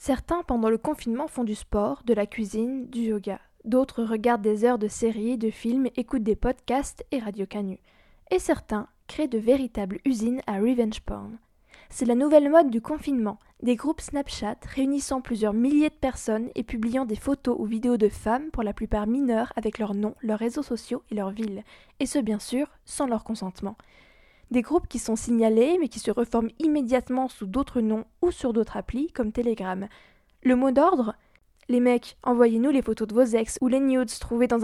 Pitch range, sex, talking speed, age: 220-265 Hz, female, 195 wpm, 20-39